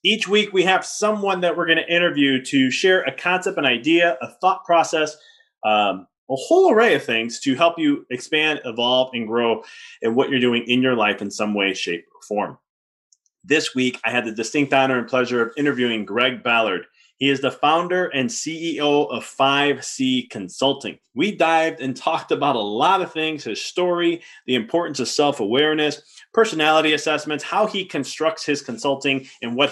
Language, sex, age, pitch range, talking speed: English, male, 30-49, 125-165 Hz, 185 wpm